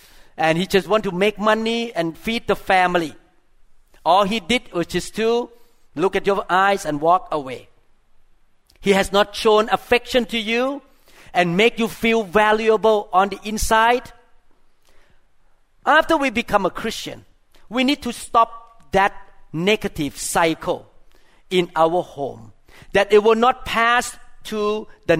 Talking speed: 145 wpm